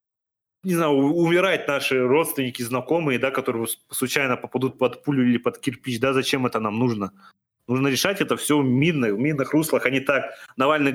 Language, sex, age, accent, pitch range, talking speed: Russian, male, 30-49, native, 120-150 Hz, 180 wpm